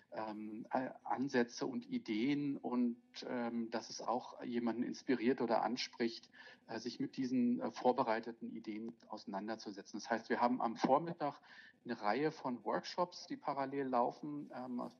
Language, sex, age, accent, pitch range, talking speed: English, male, 40-59, German, 115-150 Hz, 145 wpm